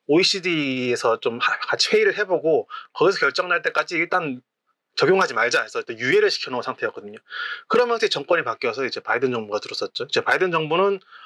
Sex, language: male, English